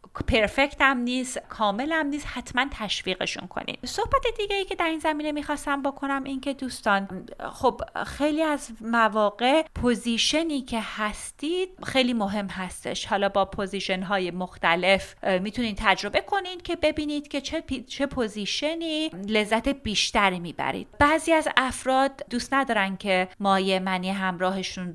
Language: Persian